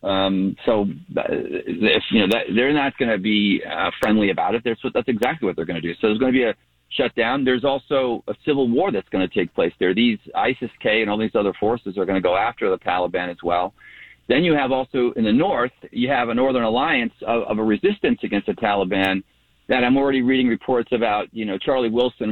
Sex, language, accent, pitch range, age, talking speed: male, English, American, 105-135 Hz, 40-59, 235 wpm